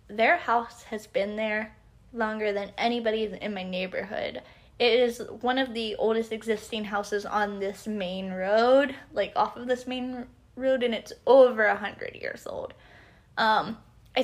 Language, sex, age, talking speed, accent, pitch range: English, female, 10-29, 160 wpm, American, 205-270 Hz